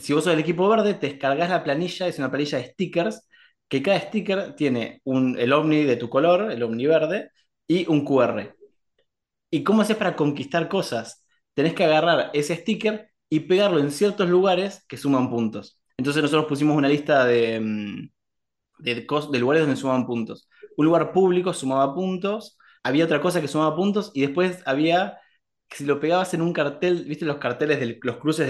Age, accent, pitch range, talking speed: 20-39, Argentinian, 130-175 Hz, 185 wpm